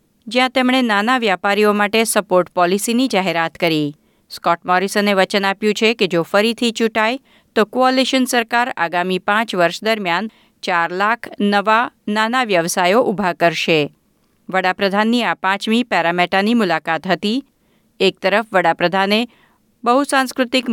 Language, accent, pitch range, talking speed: Gujarati, native, 180-235 Hz, 105 wpm